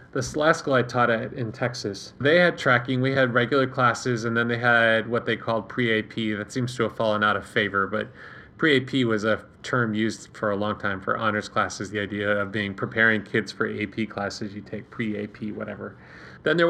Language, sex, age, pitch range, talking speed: English, male, 30-49, 110-130 Hz, 210 wpm